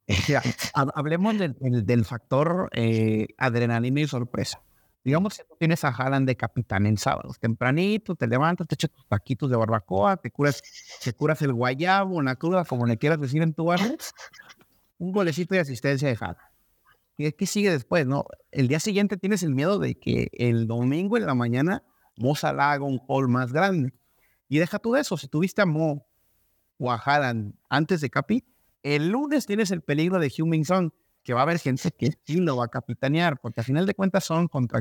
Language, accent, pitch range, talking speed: Spanish, Mexican, 115-160 Hz, 200 wpm